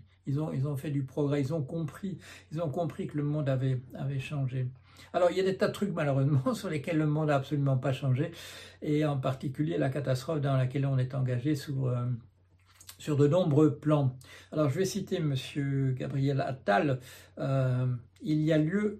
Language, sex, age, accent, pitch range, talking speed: French, male, 60-79, French, 130-150 Hz, 205 wpm